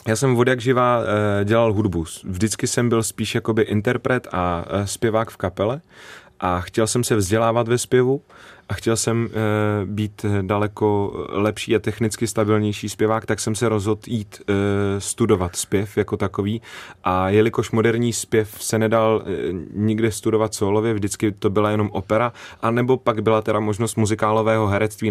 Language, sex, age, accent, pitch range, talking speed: Czech, male, 30-49, native, 100-115 Hz, 150 wpm